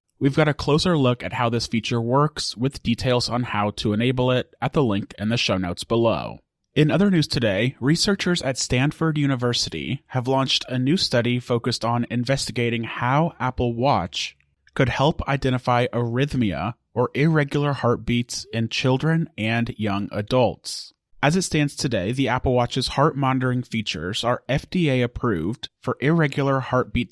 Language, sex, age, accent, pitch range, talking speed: English, male, 30-49, American, 115-140 Hz, 155 wpm